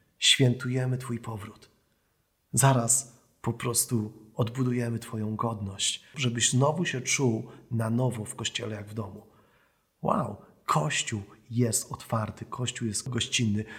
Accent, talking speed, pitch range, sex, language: native, 115 wpm, 110-125 Hz, male, Polish